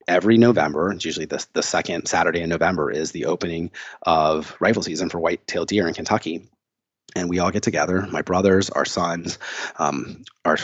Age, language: 30-49, English